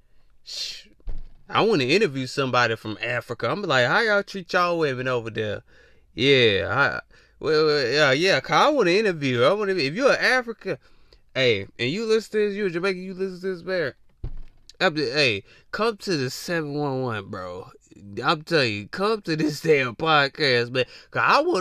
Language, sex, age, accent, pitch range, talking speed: English, male, 20-39, American, 125-190 Hz, 170 wpm